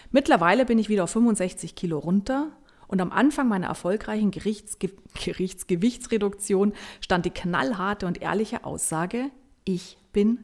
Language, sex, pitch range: German, female, 180-245 Hz